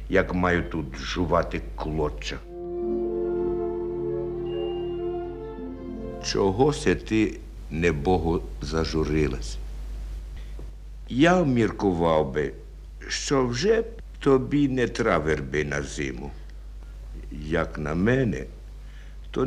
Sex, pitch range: male, 75-105 Hz